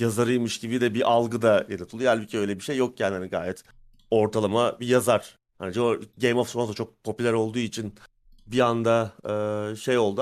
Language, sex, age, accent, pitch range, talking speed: Turkish, male, 30-49, native, 110-130 Hz, 190 wpm